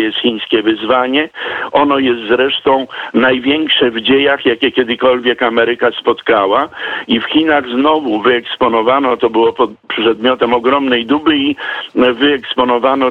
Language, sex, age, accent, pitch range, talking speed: Polish, male, 50-69, native, 120-140 Hz, 115 wpm